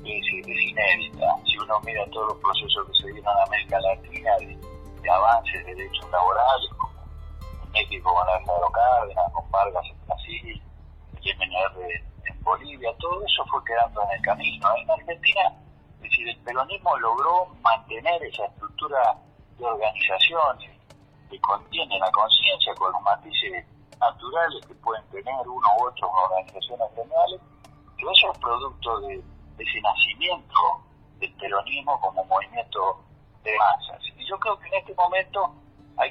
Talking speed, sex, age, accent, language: 155 wpm, male, 50-69, Argentinian, Spanish